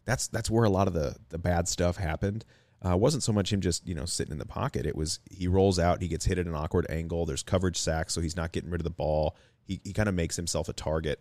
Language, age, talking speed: English, 30-49, 295 wpm